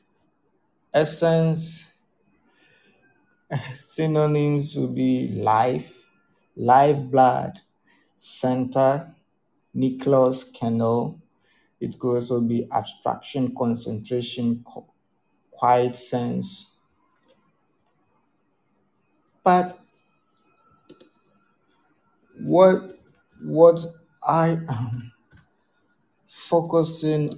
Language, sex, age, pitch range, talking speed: English, male, 50-69, 125-160 Hz, 55 wpm